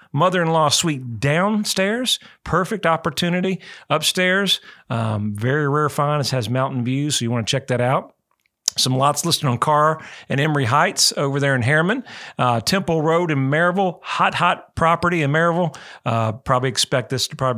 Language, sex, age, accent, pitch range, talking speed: English, male, 40-59, American, 125-165 Hz, 165 wpm